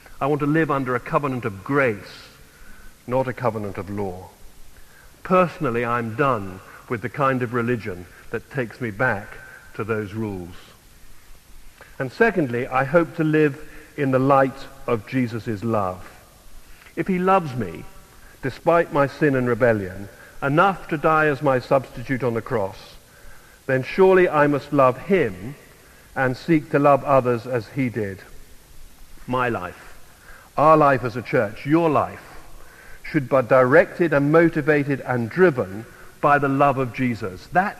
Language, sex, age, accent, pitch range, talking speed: English, male, 50-69, British, 115-150 Hz, 150 wpm